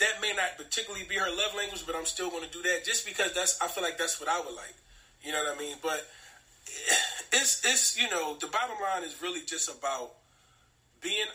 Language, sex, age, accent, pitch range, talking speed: English, male, 30-49, American, 180-265 Hz, 235 wpm